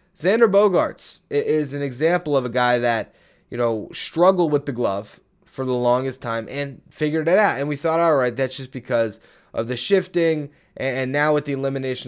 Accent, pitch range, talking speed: American, 120-150 Hz, 195 wpm